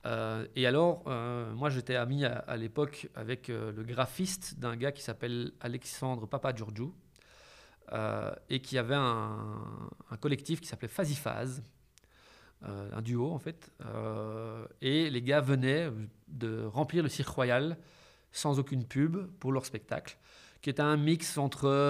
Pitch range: 115-145 Hz